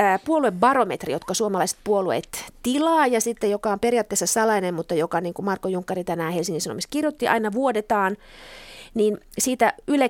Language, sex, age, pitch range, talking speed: Finnish, female, 30-49, 185-235 Hz, 155 wpm